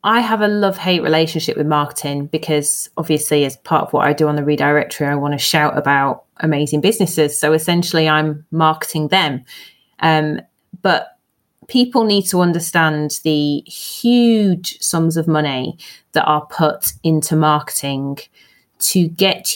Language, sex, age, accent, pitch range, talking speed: English, female, 30-49, British, 150-170 Hz, 145 wpm